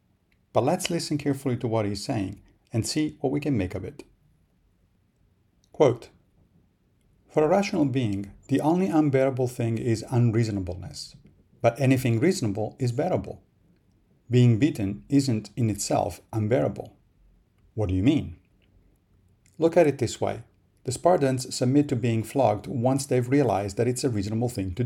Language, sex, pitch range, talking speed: English, male, 100-135 Hz, 150 wpm